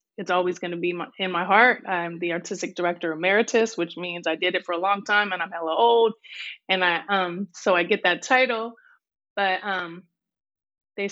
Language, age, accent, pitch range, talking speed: English, 20-39, American, 180-210 Hz, 195 wpm